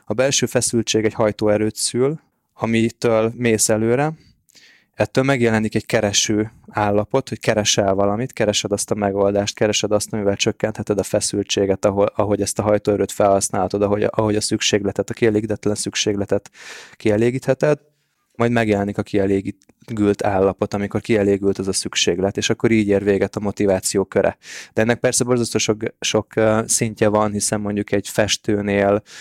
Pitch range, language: 100-115 Hz, Hungarian